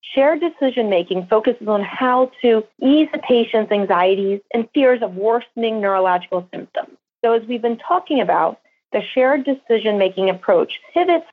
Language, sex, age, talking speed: English, female, 30-49, 145 wpm